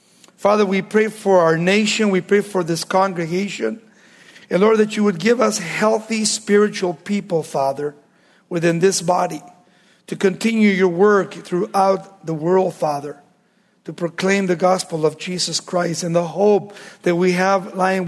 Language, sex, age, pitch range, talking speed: English, male, 50-69, 180-215 Hz, 155 wpm